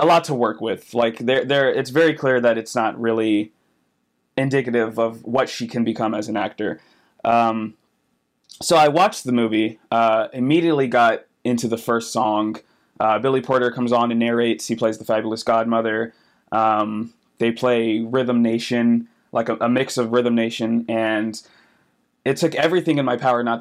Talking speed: 175 wpm